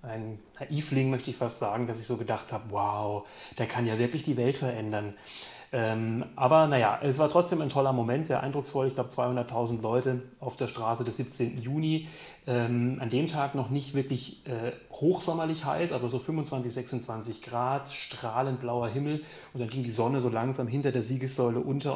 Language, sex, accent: German, male, German